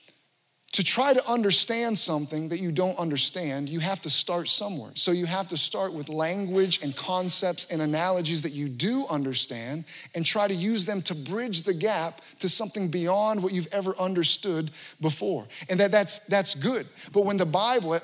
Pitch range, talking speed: 165-210 Hz, 185 wpm